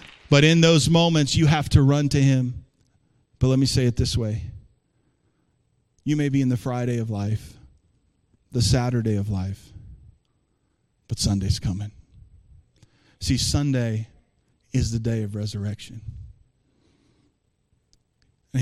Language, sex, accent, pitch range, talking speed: English, male, American, 110-135 Hz, 130 wpm